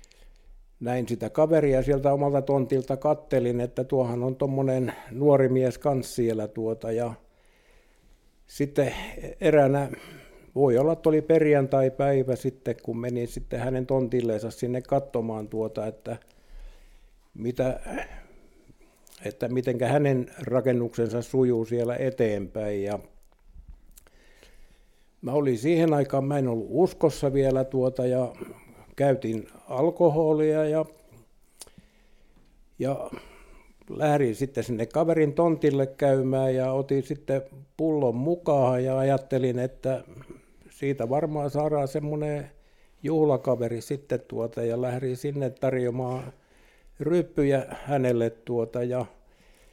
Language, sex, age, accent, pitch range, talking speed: Finnish, male, 60-79, native, 120-145 Hz, 105 wpm